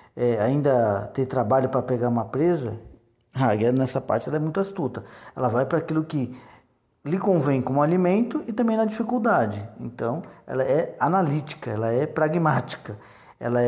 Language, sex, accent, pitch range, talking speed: Portuguese, male, Brazilian, 120-145 Hz, 160 wpm